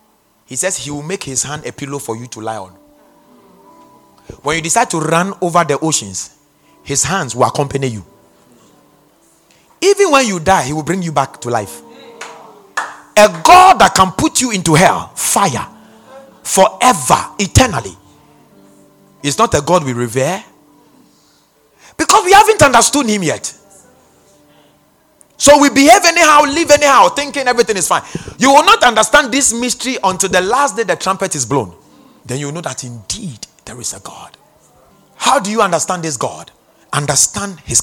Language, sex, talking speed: English, male, 160 wpm